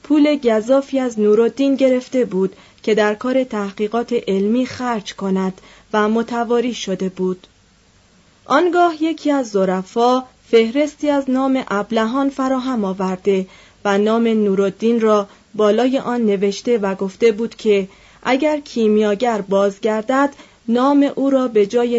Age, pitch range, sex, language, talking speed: 30-49, 205-265 Hz, female, Persian, 125 wpm